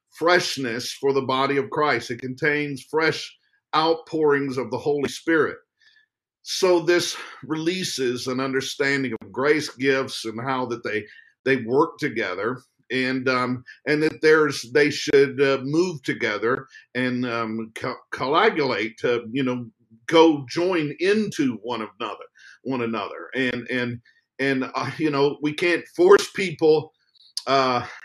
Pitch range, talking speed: 130-170 Hz, 135 wpm